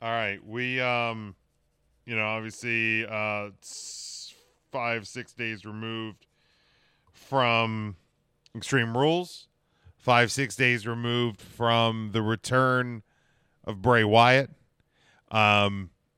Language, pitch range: English, 110-130 Hz